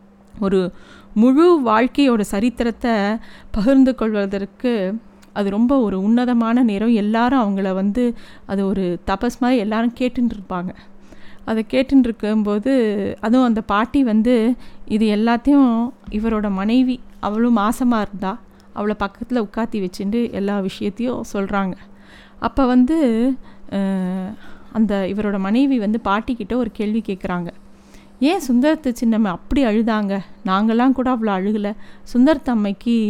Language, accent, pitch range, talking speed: Tamil, native, 200-245 Hz, 110 wpm